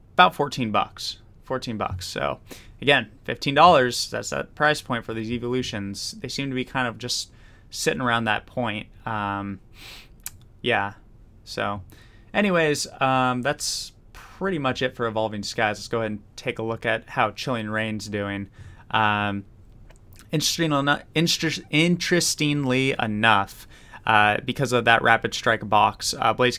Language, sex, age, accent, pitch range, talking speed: English, male, 20-39, American, 105-125 Hz, 140 wpm